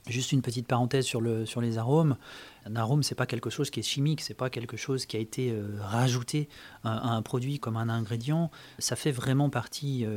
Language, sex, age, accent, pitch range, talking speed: French, male, 30-49, French, 115-135 Hz, 235 wpm